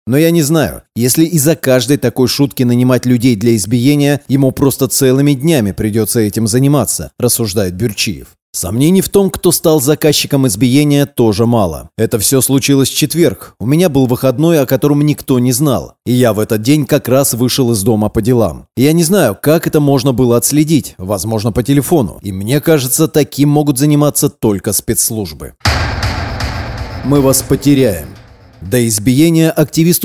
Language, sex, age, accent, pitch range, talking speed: Russian, male, 30-49, native, 115-145 Hz, 165 wpm